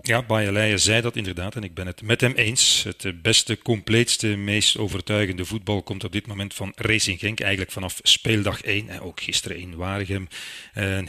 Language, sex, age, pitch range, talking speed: Dutch, male, 40-59, 95-115 Hz, 190 wpm